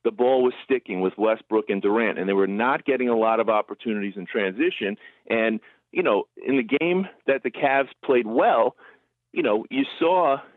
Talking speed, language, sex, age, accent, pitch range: 195 wpm, English, male, 40-59, American, 105-135 Hz